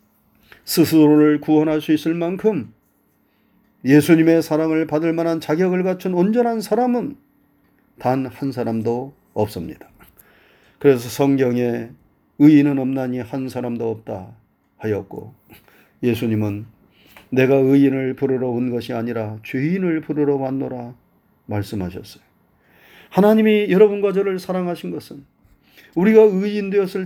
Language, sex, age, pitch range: Korean, male, 40-59, 120-165 Hz